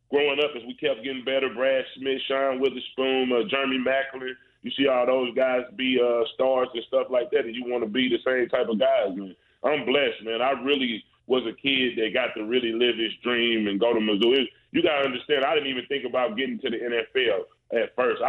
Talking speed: 240 wpm